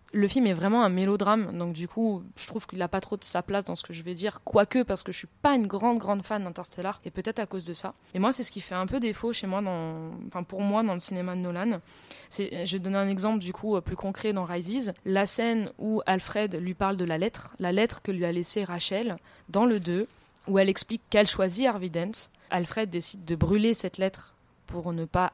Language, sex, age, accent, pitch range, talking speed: French, female, 20-39, French, 185-225 Hz, 260 wpm